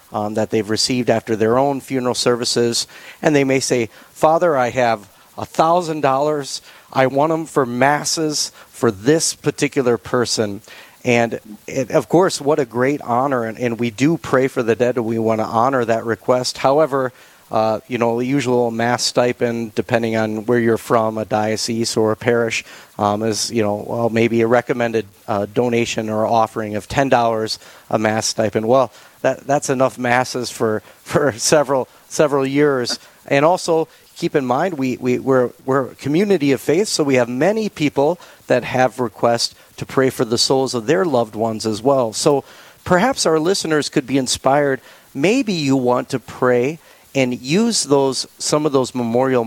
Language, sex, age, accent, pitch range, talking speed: English, male, 40-59, American, 115-140 Hz, 175 wpm